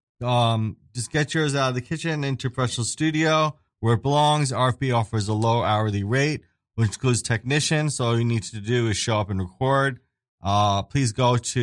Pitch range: 110-140 Hz